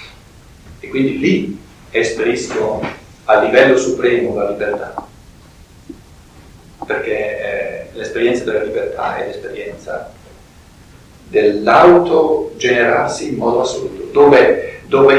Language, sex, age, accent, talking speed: Italian, male, 50-69, native, 85 wpm